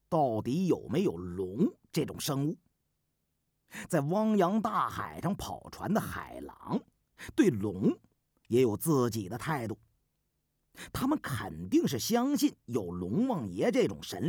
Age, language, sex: 50-69, Chinese, male